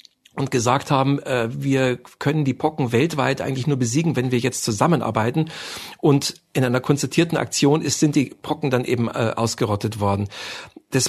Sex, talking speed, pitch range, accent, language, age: male, 160 wpm, 125-155 Hz, German, German, 50-69